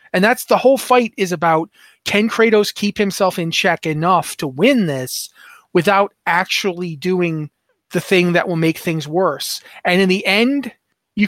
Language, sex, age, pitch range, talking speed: English, male, 30-49, 165-210 Hz, 170 wpm